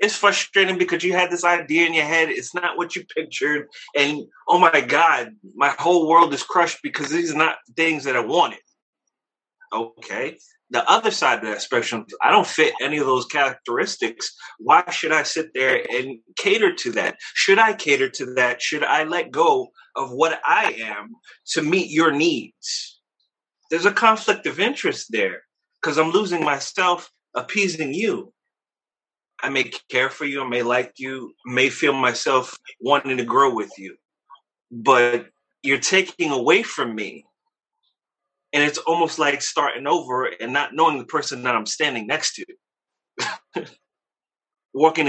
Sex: male